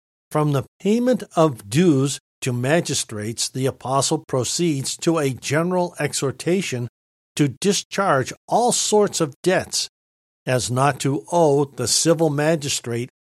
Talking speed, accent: 120 wpm, American